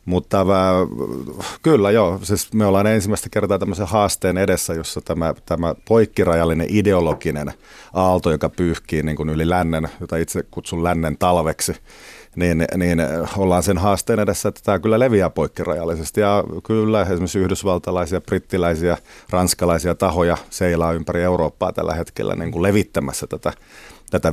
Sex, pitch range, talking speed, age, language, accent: male, 80-100 Hz, 130 wpm, 30-49, Finnish, native